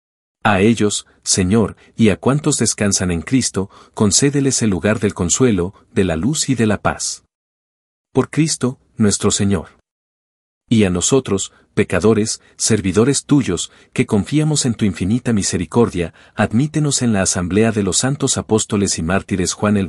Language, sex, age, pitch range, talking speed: Spanish, male, 40-59, 95-120 Hz, 150 wpm